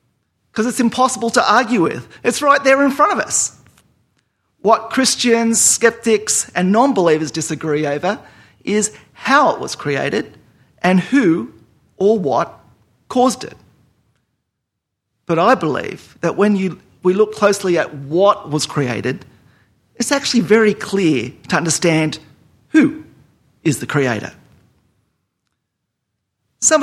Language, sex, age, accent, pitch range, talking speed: English, male, 40-59, Australian, 180-250 Hz, 125 wpm